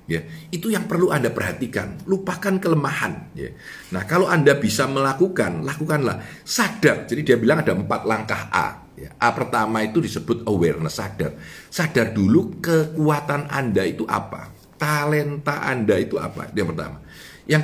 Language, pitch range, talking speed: Indonesian, 105-165 Hz, 150 wpm